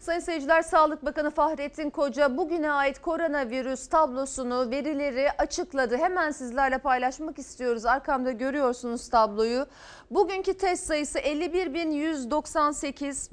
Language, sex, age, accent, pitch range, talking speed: Turkish, female, 40-59, native, 250-330 Hz, 105 wpm